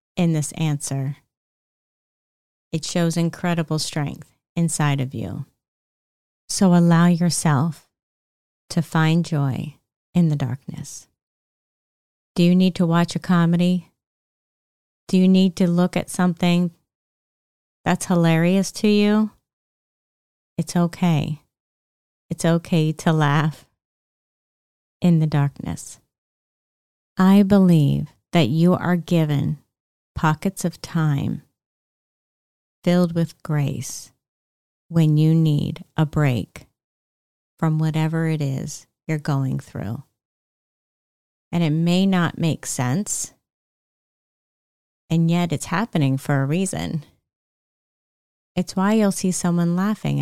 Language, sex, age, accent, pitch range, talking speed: English, female, 30-49, American, 140-175 Hz, 105 wpm